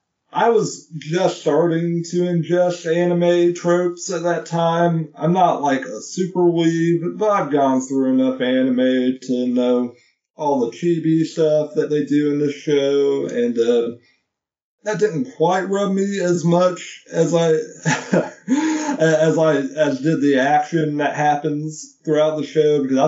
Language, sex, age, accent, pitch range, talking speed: English, male, 20-39, American, 125-170 Hz, 150 wpm